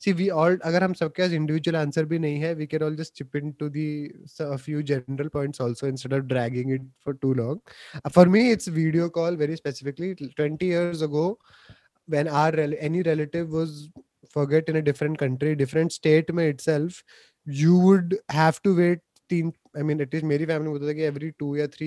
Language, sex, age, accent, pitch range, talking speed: Hindi, male, 20-39, native, 140-165 Hz, 145 wpm